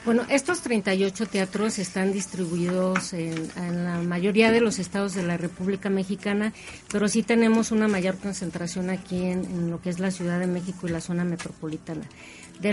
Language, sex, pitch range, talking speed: Spanish, female, 180-220 Hz, 180 wpm